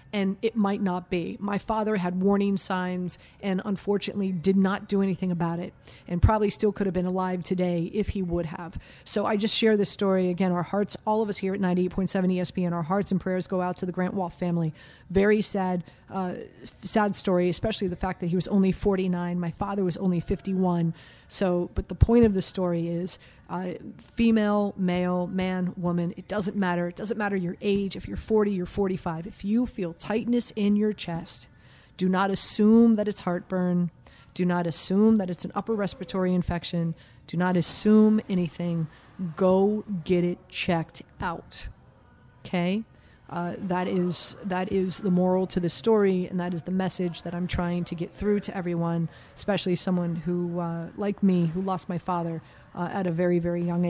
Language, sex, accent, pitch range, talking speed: English, female, American, 175-200 Hz, 195 wpm